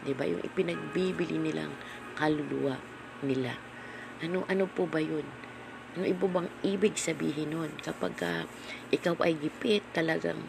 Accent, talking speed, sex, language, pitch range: native, 130 wpm, female, Filipino, 150-190 Hz